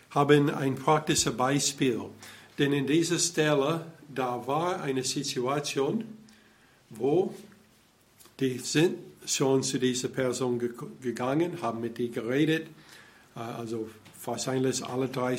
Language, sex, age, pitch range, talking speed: German, male, 60-79, 125-155 Hz, 115 wpm